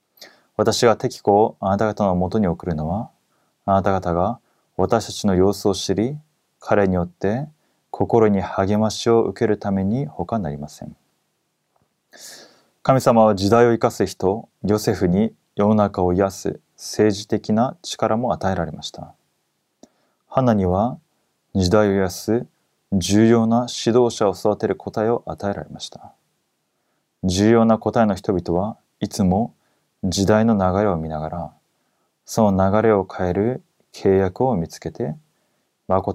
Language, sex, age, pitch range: Korean, male, 20-39, 95-115 Hz